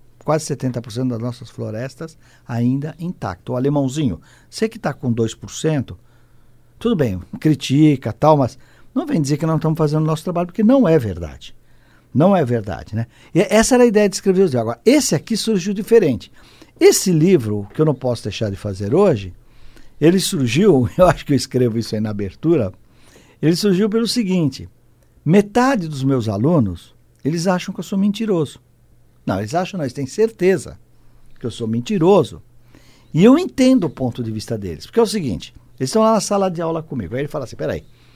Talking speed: 190 wpm